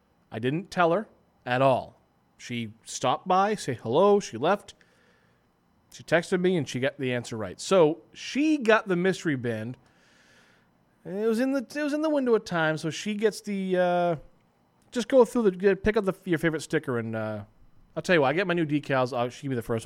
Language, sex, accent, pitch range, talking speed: English, male, American, 125-200 Hz, 215 wpm